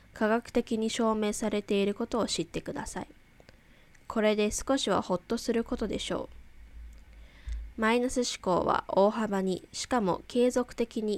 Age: 10-29